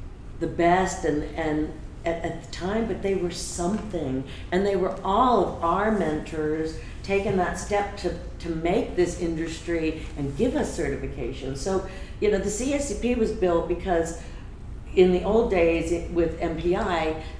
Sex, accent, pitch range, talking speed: female, American, 150-190 Hz, 160 wpm